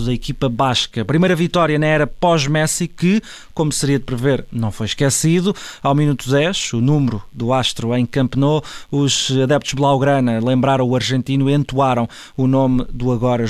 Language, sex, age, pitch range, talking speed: Portuguese, male, 20-39, 125-155 Hz, 165 wpm